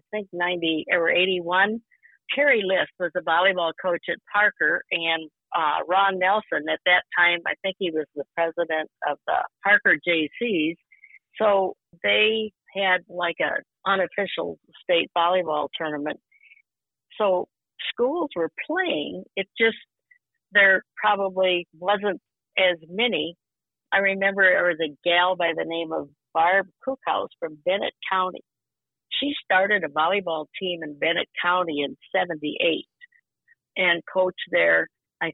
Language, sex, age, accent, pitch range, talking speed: English, female, 50-69, American, 165-210 Hz, 135 wpm